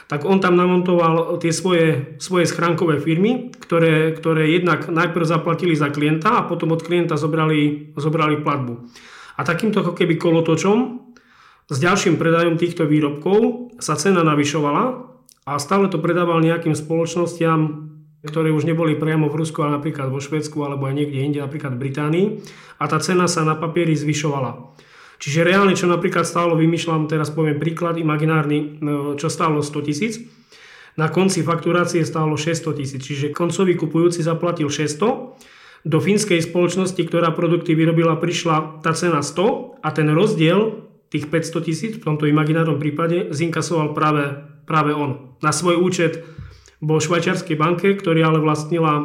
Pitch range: 150-170 Hz